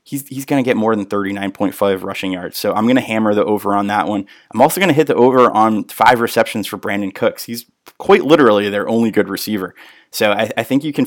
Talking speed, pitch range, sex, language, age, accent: 245 wpm, 105-130 Hz, male, English, 20-39, American